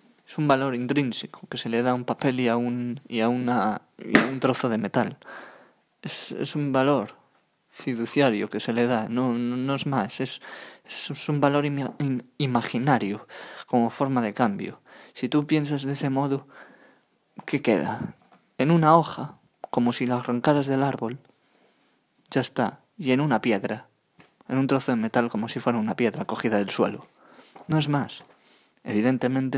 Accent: Spanish